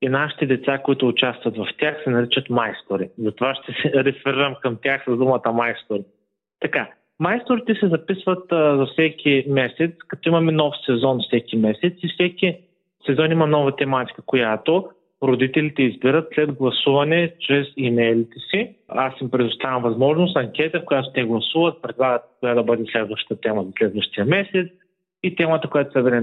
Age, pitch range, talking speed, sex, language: 30-49, 125-165 Hz, 160 wpm, male, Bulgarian